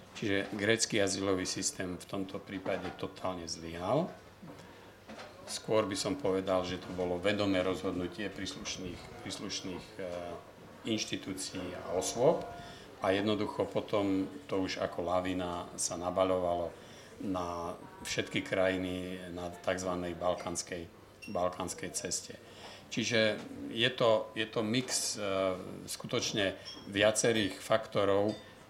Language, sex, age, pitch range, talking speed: Slovak, male, 50-69, 90-100 Hz, 100 wpm